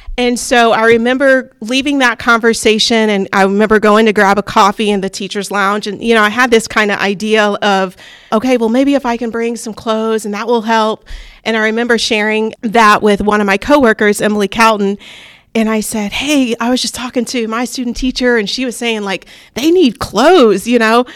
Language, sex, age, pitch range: English, female, 40-59, 205-245 Hz